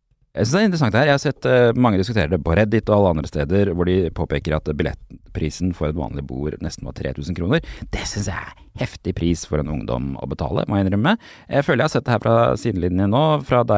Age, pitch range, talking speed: 30-49, 85-120 Hz, 245 wpm